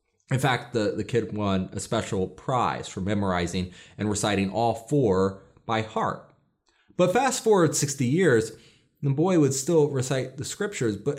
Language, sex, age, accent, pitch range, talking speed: English, male, 30-49, American, 120-160 Hz, 160 wpm